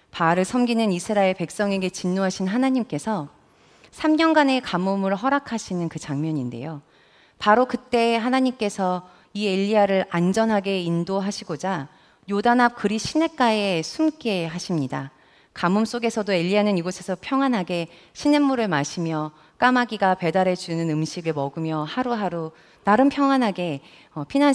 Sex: female